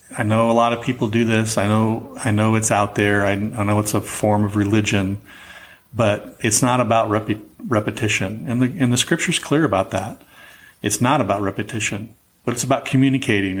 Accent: American